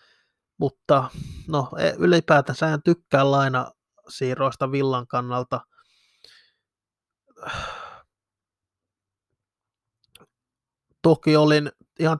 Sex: male